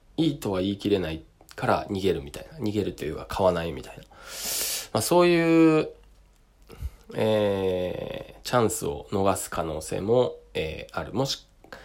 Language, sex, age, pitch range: Japanese, male, 20-39, 85-115 Hz